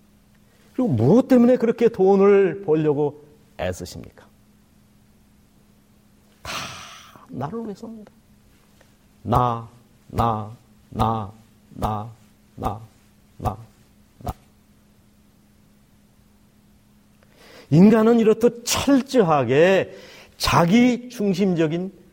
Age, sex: 40-59, male